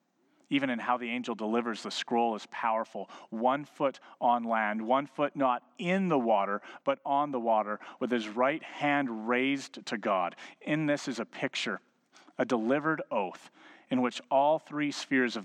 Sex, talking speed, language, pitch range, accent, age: male, 175 wpm, English, 110-150 Hz, American, 40-59